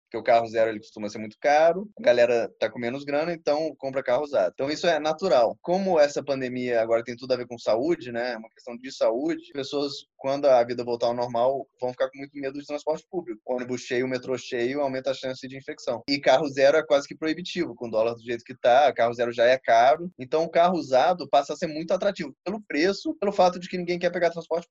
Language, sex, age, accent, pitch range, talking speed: Portuguese, male, 20-39, Brazilian, 125-170 Hz, 245 wpm